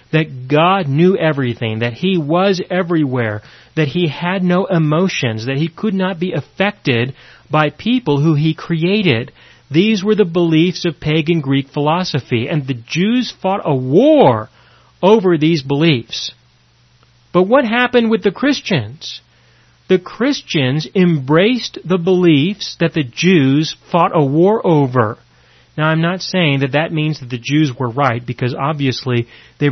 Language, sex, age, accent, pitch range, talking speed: English, male, 40-59, American, 130-185 Hz, 150 wpm